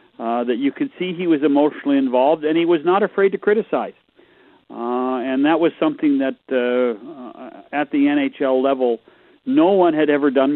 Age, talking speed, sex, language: 40-59, 180 wpm, male, English